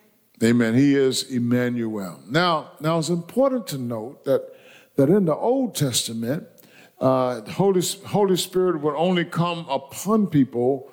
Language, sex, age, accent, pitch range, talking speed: English, male, 50-69, American, 125-175 Hz, 145 wpm